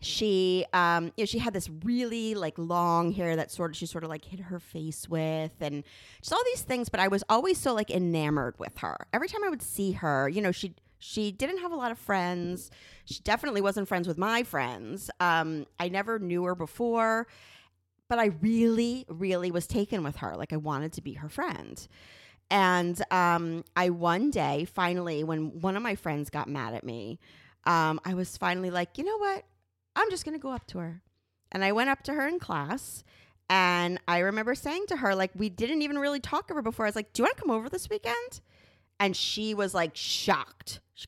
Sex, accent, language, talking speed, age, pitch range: female, American, English, 220 wpm, 30-49, 160-230 Hz